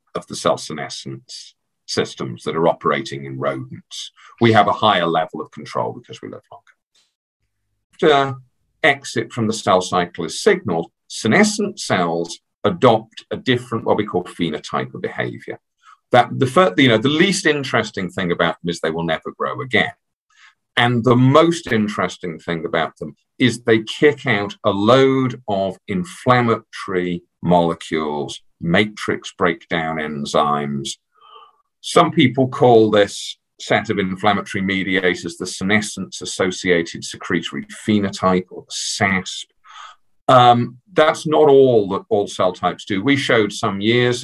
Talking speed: 135 wpm